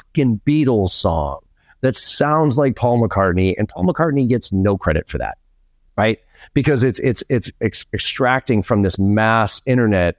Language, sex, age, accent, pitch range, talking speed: English, male, 40-59, American, 90-120 Hz, 145 wpm